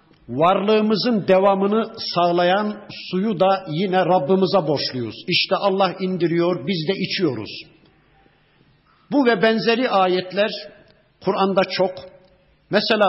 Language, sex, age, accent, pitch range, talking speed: Turkish, male, 60-79, native, 175-210 Hz, 95 wpm